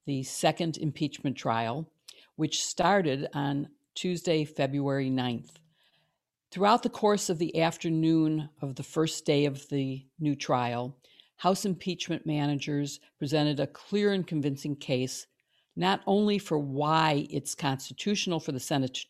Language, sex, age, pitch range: English, female, 60-79, 140-170 Hz